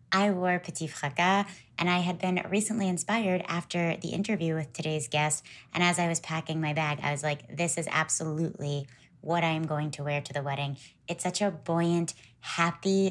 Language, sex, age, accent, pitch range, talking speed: English, female, 20-39, American, 150-180 Hz, 190 wpm